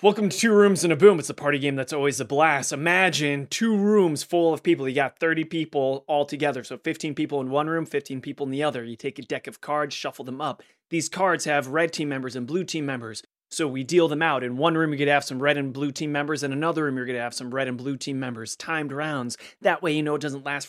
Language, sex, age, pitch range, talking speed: English, male, 30-49, 140-175 Hz, 285 wpm